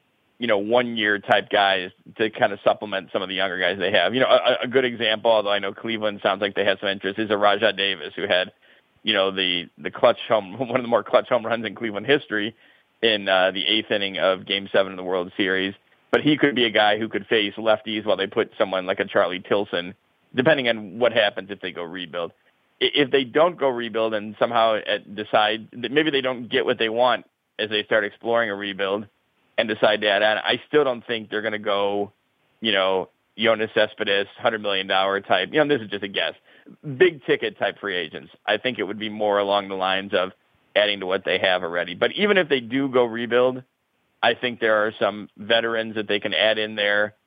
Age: 40-59